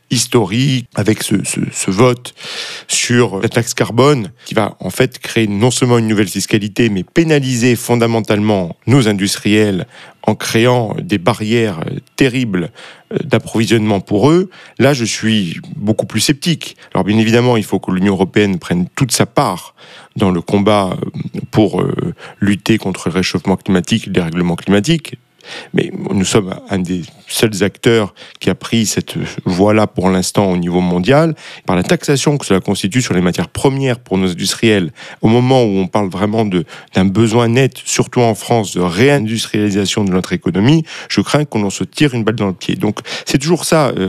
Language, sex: French, male